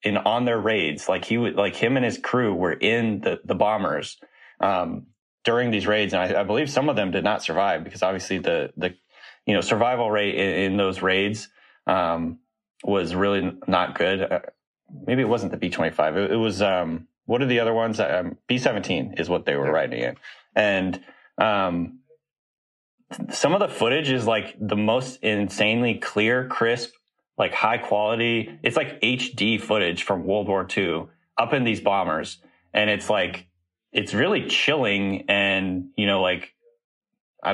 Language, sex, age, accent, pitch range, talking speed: English, male, 30-49, American, 95-115 Hz, 175 wpm